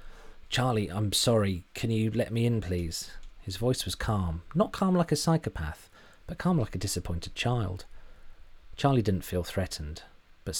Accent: British